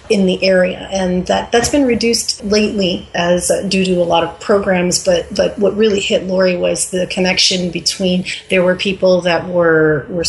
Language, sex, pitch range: English, female, 170-195 Hz